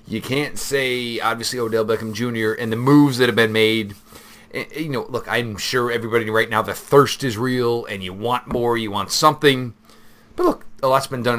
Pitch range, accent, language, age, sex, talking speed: 105-125 Hz, American, English, 30-49, male, 205 wpm